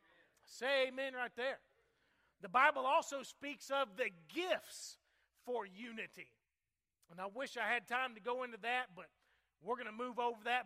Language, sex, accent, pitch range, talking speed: English, male, American, 230-285 Hz, 170 wpm